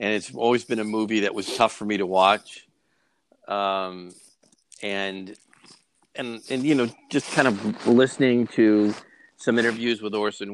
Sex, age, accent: male, 50-69, American